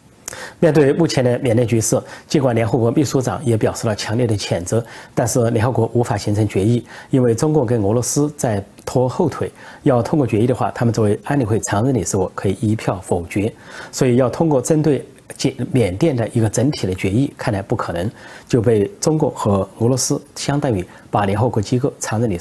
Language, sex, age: Chinese, male, 30-49